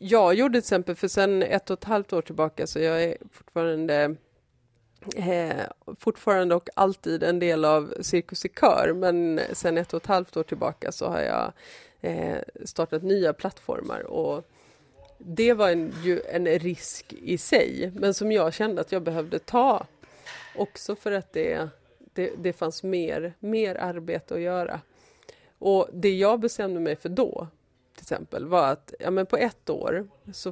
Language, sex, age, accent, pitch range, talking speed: Swedish, female, 30-49, native, 170-215 Hz, 165 wpm